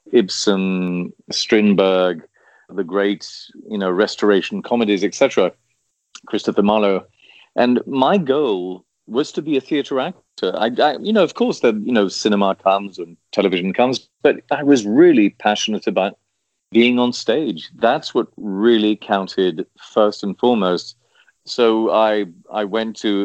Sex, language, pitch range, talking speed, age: male, English, 95-110 Hz, 140 wpm, 40-59